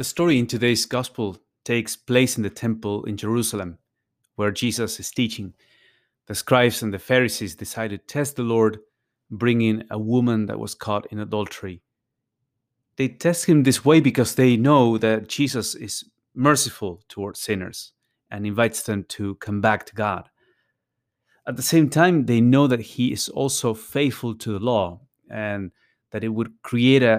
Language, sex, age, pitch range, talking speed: English, male, 30-49, 105-130 Hz, 165 wpm